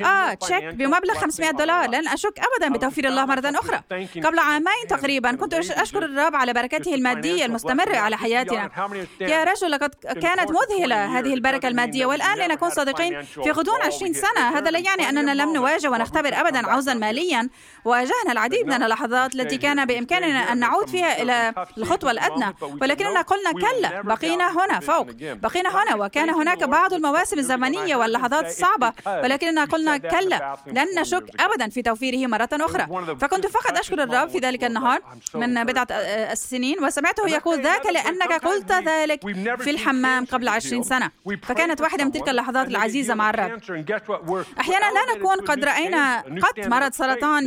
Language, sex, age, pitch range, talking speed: Arabic, female, 30-49, 250-350 Hz, 160 wpm